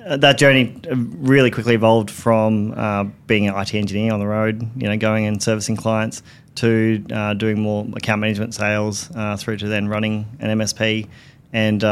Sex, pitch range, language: male, 105-120 Hz, English